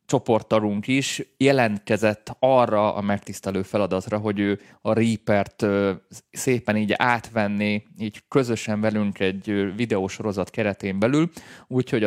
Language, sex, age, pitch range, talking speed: Hungarian, male, 20-39, 105-125 Hz, 110 wpm